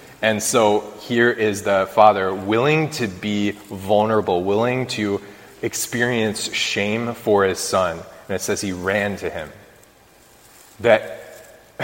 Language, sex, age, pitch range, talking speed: English, male, 20-39, 90-110 Hz, 125 wpm